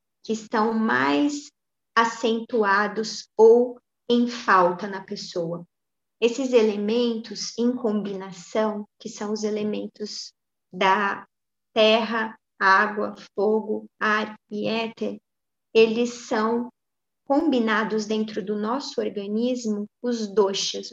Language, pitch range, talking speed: Portuguese, 210-245 Hz, 95 wpm